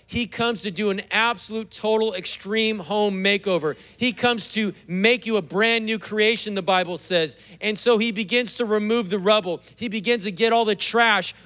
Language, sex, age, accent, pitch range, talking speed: English, male, 40-59, American, 190-230 Hz, 195 wpm